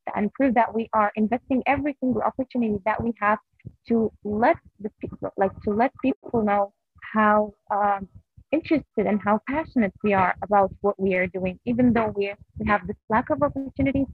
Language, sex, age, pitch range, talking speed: English, female, 20-39, 200-245 Hz, 180 wpm